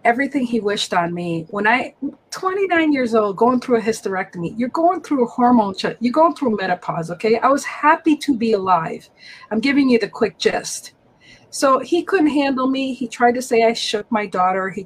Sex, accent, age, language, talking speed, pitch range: female, American, 40-59, English, 200 wpm, 195-245 Hz